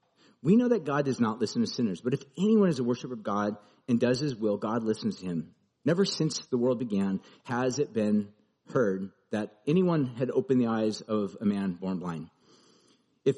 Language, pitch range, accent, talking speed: English, 105-155 Hz, American, 205 wpm